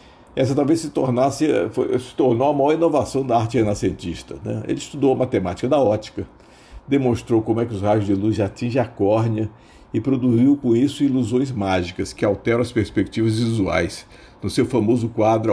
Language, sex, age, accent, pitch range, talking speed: Portuguese, male, 50-69, Brazilian, 100-125 Hz, 180 wpm